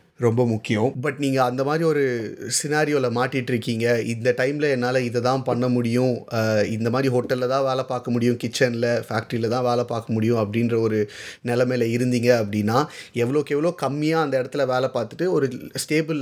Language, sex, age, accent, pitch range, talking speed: Tamil, male, 30-49, native, 120-145 Hz, 155 wpm